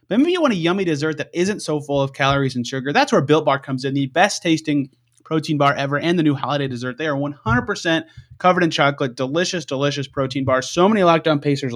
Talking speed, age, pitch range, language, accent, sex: 230 wpm, 30-49, 140-175 Hz, English, American, male